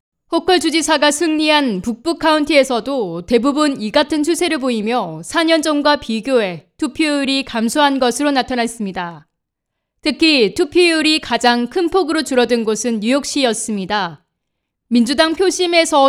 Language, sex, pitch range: Korean, female, 230-315 Hz